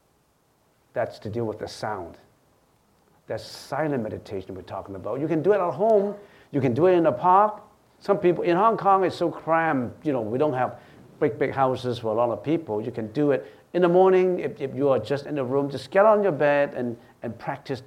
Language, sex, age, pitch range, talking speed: English, male, 50-69, 120-185 Hz, 230 wpm